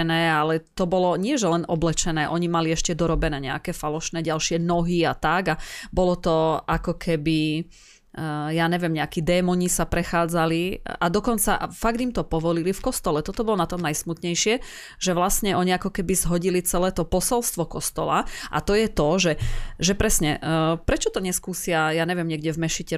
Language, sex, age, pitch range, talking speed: Slovak, female, 30-49, 160-195 Hz, 170 wpm